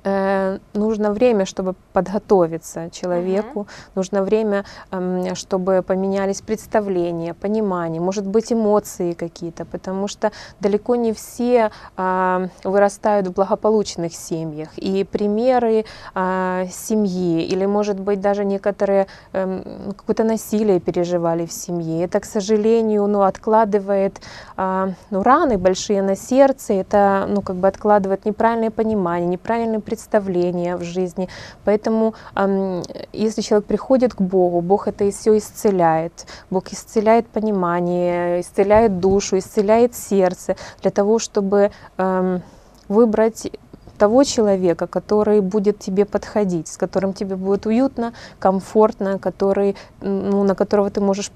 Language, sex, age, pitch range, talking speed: Russian, female, 20-39, 185-215 Hz, 120 wpm